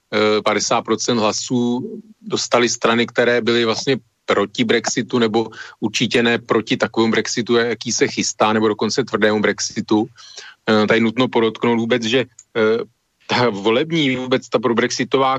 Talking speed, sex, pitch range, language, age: 125 wpm, male, 105-120 Hz, Slovak, 40-59